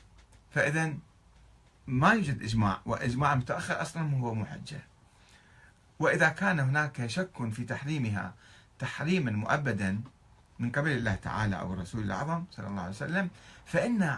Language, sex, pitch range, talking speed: Arabic, male, 110-160 Hz, 125 wpm